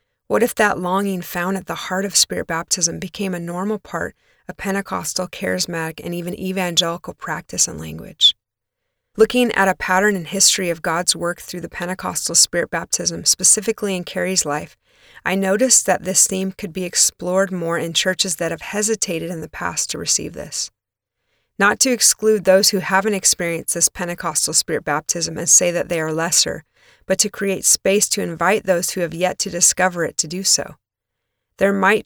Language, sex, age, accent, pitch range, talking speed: English, female, 30-49, American, 175-200 Hz, 180 wpm